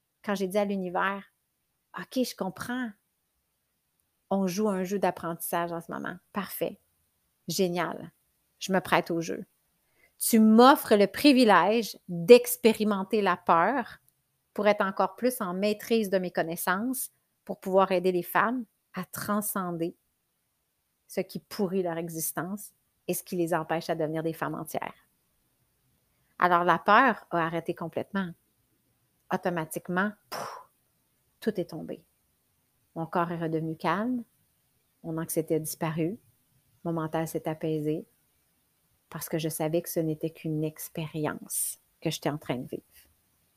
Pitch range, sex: 165-205 Hz, female